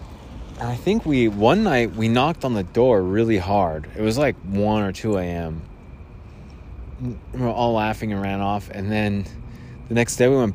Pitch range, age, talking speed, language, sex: 90-125 Hz, 20-39, 195 wpm, English, male